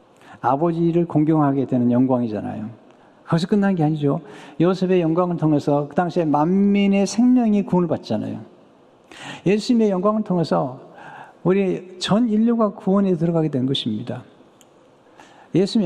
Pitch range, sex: 145-185 Hz, male